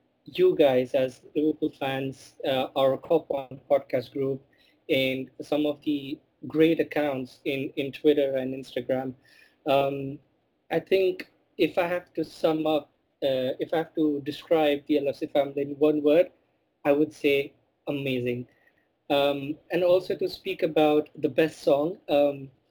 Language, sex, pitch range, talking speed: English, male, 140-160 Hz, 150 wpm